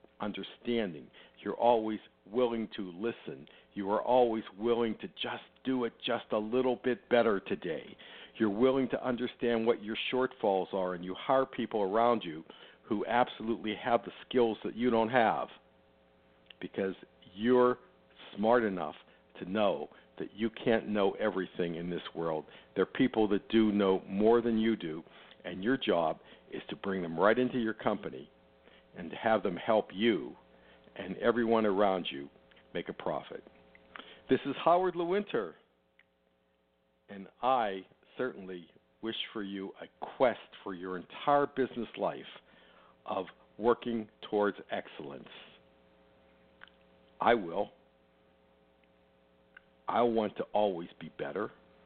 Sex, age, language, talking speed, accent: male, 60-79, English, 140 wpm, American